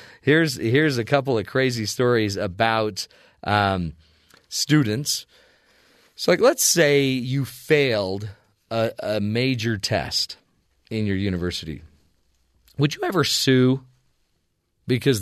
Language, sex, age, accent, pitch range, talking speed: English, male, 40-59, American, 105-135 Hz, 105 wpm